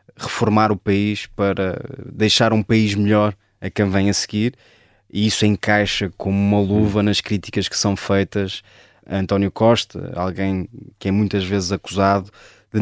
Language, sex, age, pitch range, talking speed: Portuguese, male, 20-39, 100-110 Hz, 160 wpm